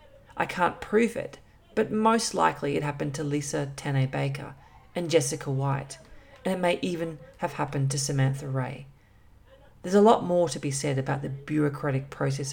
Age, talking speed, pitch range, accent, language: 40-59, 170 wpm, 140-185 Hz, Australian, English